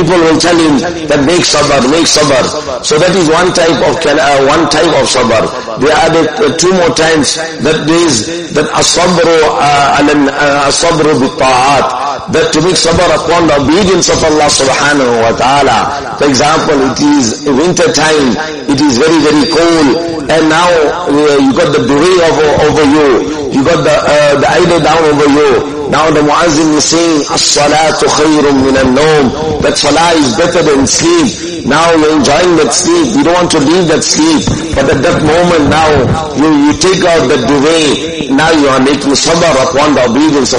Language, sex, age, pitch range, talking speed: English, male, 50-69, 150-170 Hz, 170 wpm